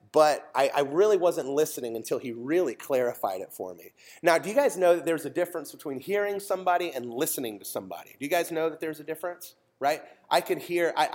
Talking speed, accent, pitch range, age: 225 wpm, American, 145-180 Hz, 30-49